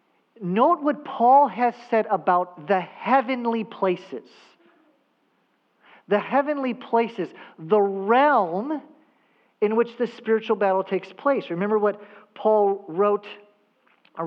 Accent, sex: American, male